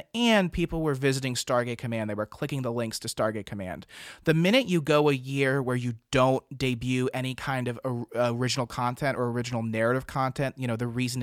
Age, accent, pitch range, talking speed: 30-49, American, 125-150 Hz, 200 wpm